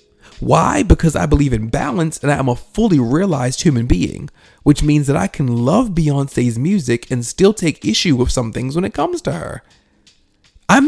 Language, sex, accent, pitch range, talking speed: English, male, American, 115-155 Hz, 195 wpm